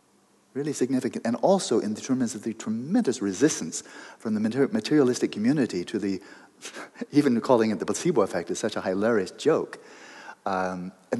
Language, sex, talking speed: English, male, 155 wpm